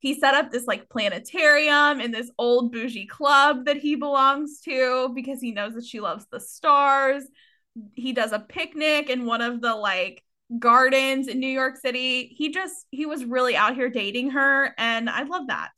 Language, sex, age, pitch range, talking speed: English, female, 20-39, 225-275 Hz, 190 wpm